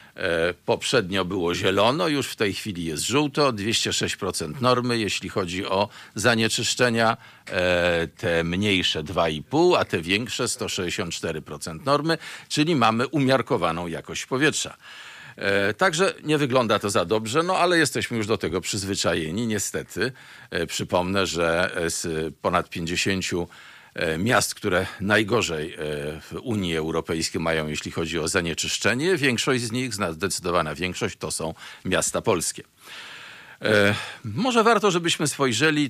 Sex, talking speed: male, 115 wpm